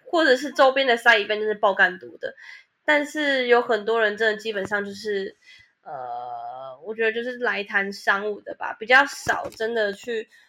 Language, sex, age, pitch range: Chinese, female, 20-39, 205-240 Hz